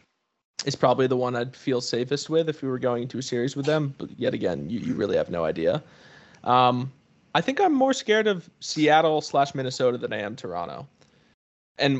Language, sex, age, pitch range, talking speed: English, male, 20-39, 120-155 Hz, 205 wpm